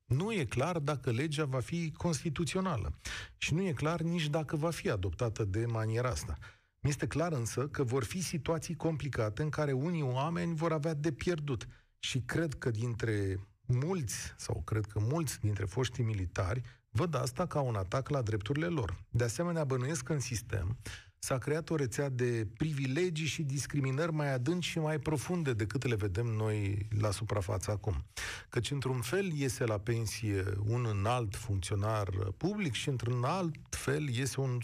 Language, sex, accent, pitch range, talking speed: Romanian, male, native, 105-150 Hz, 170 wpm